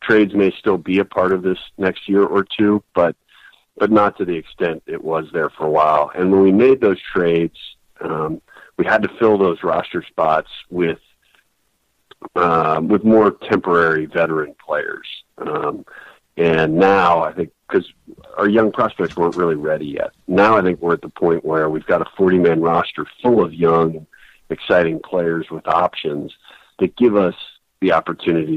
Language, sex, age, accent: English, male, 50-69, American